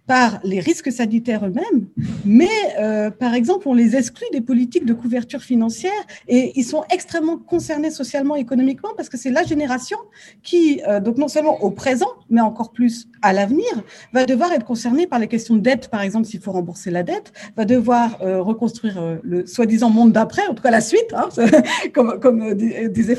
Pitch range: 220-280 Hz